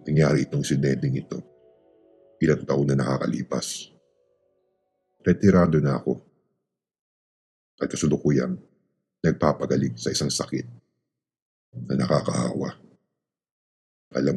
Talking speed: 85 wpm